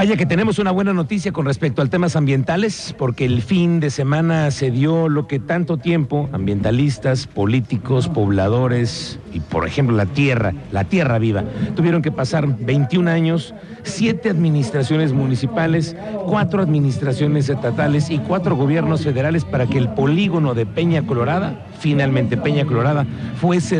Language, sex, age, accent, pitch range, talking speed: Spanish, male, 50-69, Mexican, 130-170 Hz, 150 wpm